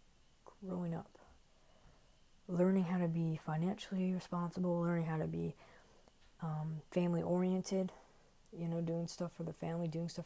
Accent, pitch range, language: American, 160-180 Hz, English